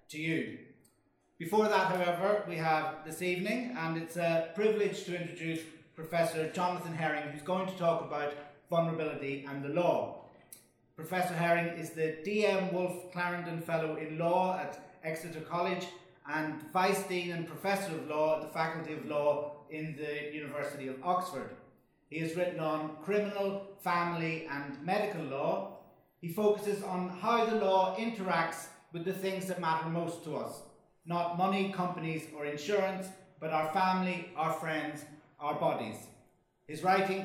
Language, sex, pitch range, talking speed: English, male, 155-190 Hz, 155 wpm